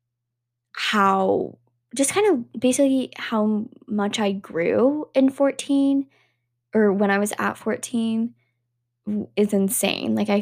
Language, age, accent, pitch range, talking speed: English, 10-29, American, 185-225 Hz, 120 wpm